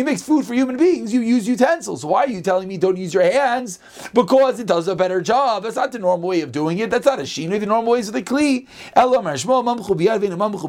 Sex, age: male, 30-49